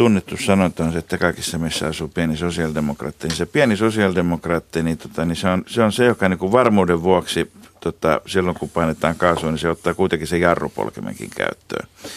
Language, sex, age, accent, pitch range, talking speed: Finnish, male, 60-79, native, 80-100 Hz, 180 wpm